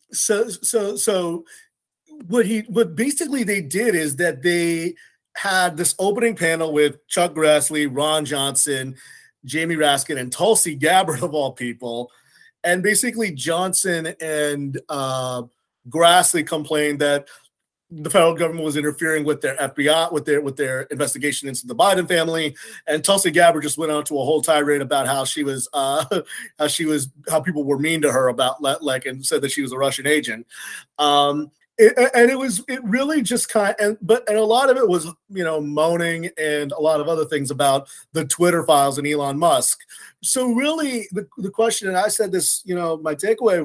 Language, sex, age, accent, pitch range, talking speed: English, male, 30-49, American, 145-205 Hz, 185 wpm